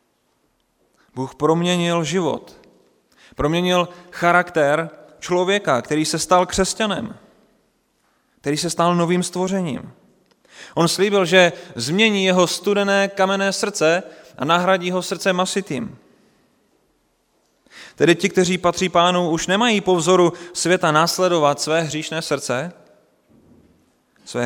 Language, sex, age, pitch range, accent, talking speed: Czech, male, 30-49, 125-175 Hz, native, 105 wpm